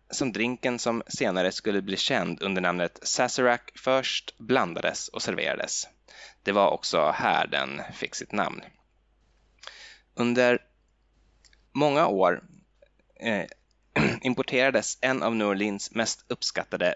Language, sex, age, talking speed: Swedish, male, 10-29, 115 wpm